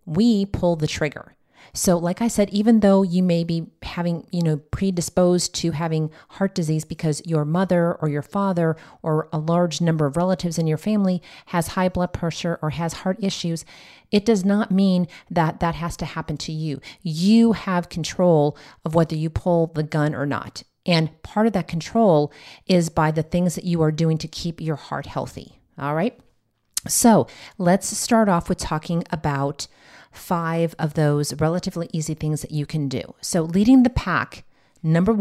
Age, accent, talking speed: 40-59, American, 185 wpm